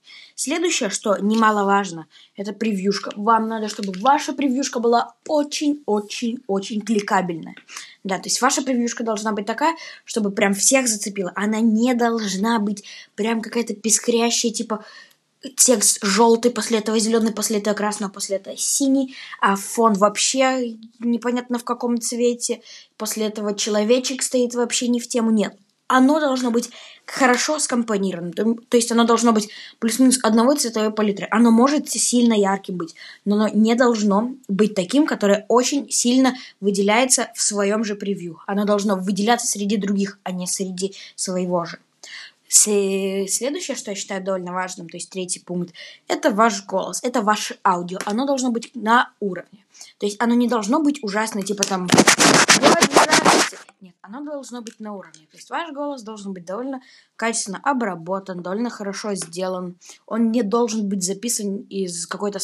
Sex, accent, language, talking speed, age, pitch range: female, native, Russian, 155 wpm, 20-39, 200-245 Hz